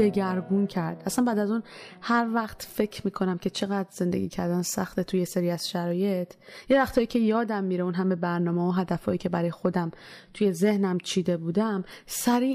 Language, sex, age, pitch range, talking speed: Persian, female, 20-39, 175-215 Hz, 175 wpm